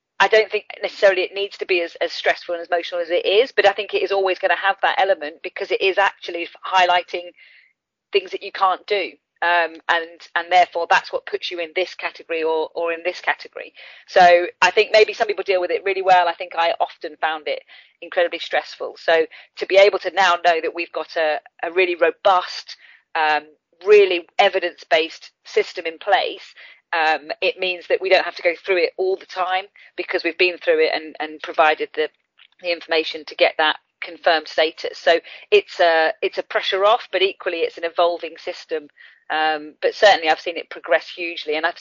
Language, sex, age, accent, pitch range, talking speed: English, female, 40-59, British, 165-205 Hz, 210 wpm